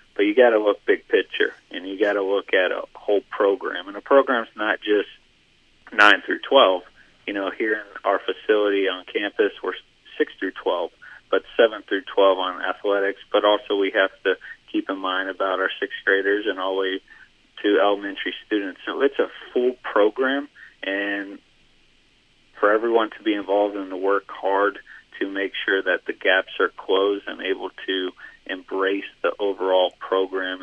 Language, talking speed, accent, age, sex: English, 175 wpm, American, 40-59, male